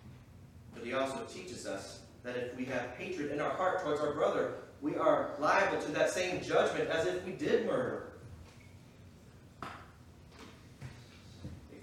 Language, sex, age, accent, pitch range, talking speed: English, male, 30-49, American, 120-180 Hz, 145 wpm